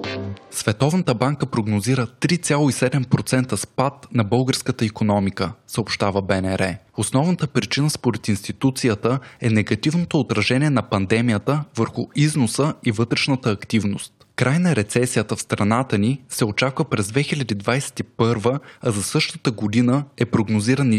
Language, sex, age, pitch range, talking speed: Bulgarian, male, 20-39, 110-140 Hz, 110 wpm